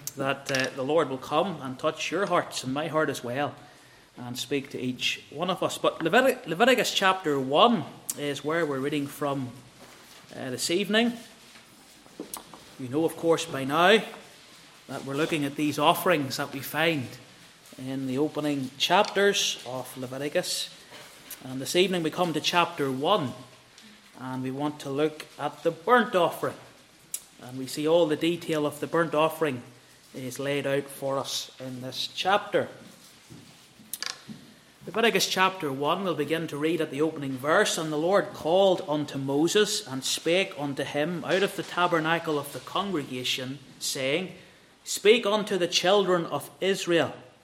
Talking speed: 160 wpm